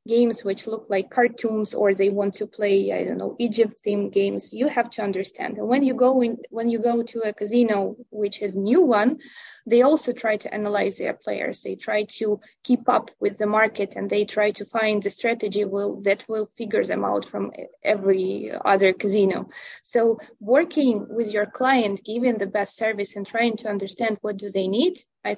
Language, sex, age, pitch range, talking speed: English, female, 20-39, 205-235 Hz, 200 wpm